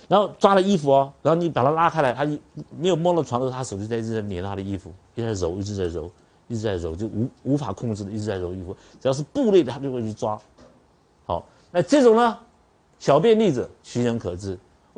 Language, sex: Chinese, male